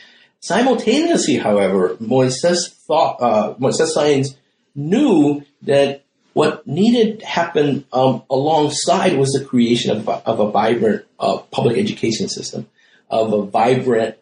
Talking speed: 115 wpm